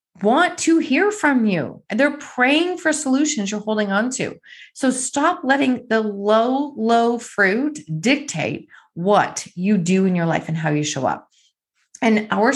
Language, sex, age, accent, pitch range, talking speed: English, female, 30-49, American, 185-250 Hz, 160 wpm